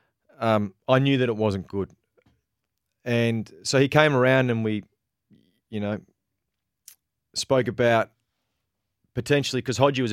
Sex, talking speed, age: male, 130 wpm, 30-49